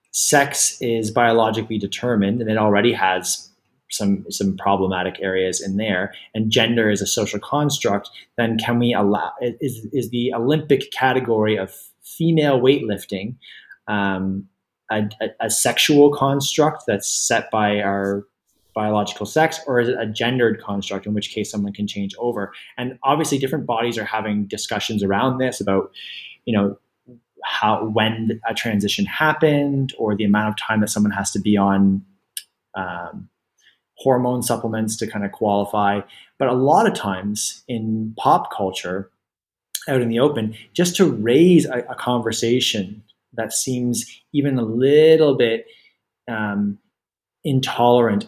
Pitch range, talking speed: 105-125 Hz, 145 wpm